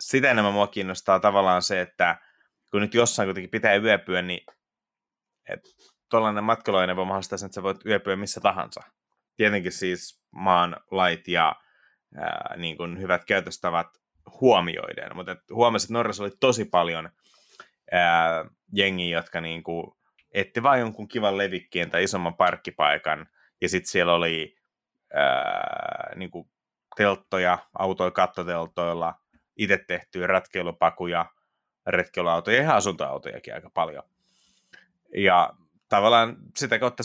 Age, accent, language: 30-49, native, Finnish